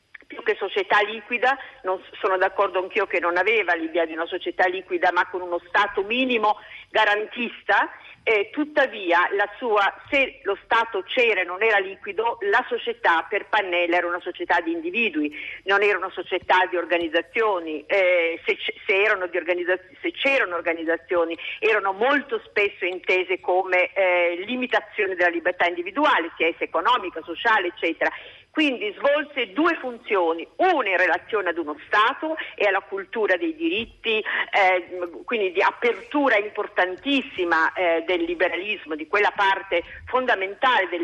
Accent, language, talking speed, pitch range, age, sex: native, Italian, 145 wpm, 175-260 Hz, 50-69, female